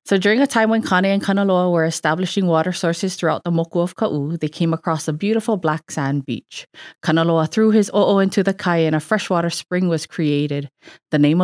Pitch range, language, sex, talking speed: 150-185 Hz, English, female, 210 wpm